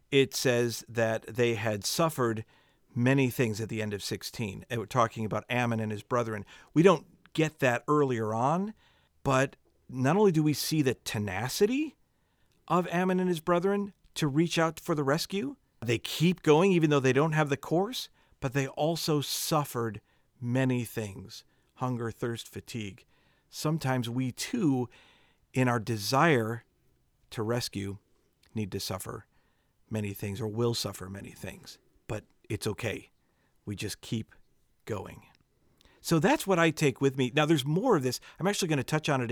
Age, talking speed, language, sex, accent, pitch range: 50-69, 165 wpm, English, male, American, 115-160 Hz